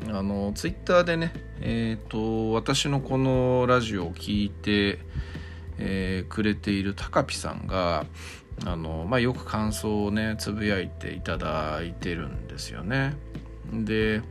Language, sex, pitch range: Japanese, male, 80-110 Hz